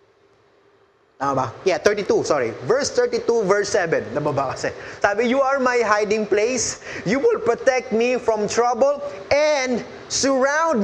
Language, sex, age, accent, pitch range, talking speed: English, male, 20-39, Filipino, 195-240 Hz, 125 wpm